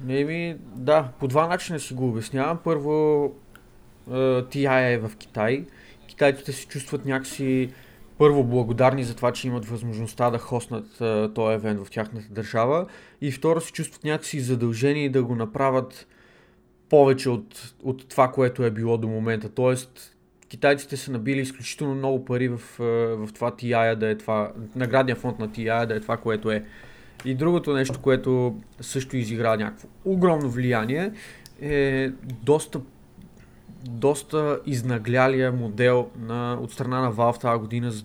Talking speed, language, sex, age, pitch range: 155 wpm, Bulgarian, male, 20-39, 115-145 Hz